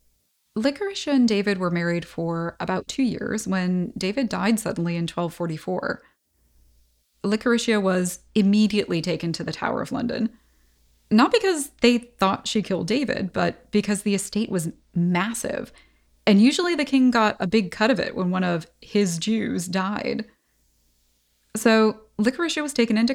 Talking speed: 150 wpm